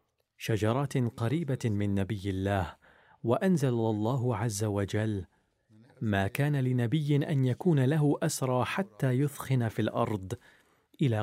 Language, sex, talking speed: Arabic, male, 110 wpm